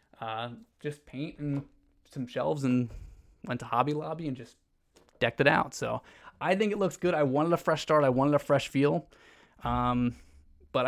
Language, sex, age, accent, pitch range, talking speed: English, male, 20-39, American, 125-155 Hz, 190 wpm